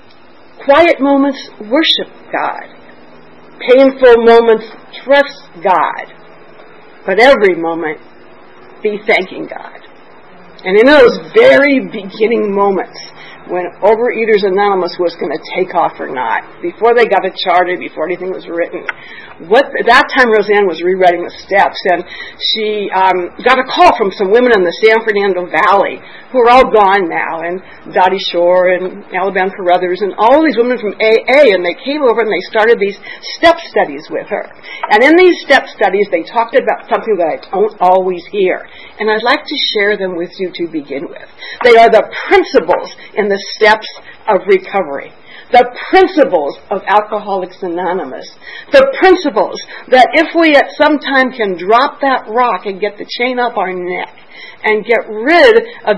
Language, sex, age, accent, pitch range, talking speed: English, female, 50-69, American, 195-280 Hz, 165 wpm